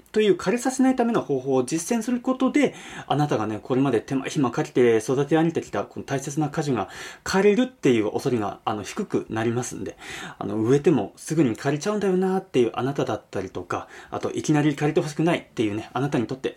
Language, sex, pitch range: Japanese, male, 130-205 Hz